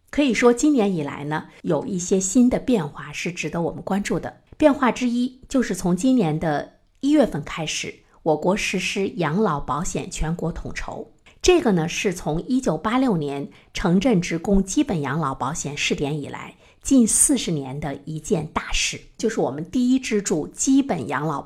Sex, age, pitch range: female, 50-69, 155-230 Hz